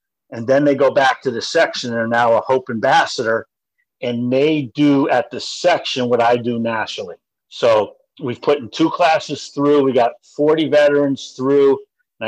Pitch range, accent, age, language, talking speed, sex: 125-155 Hz, American, 50-69, English, 180 wpm, male